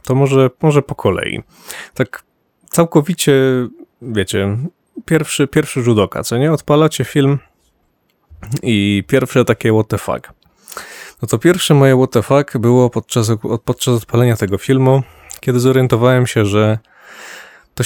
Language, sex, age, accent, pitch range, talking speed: Polish, male, 20-39, native, 115-135 Hz, 135 wpm